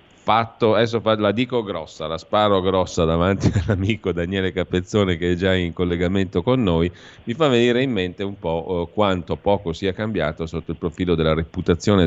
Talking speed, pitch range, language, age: 175 wpm, 80-95 Hz, Italian, 40-59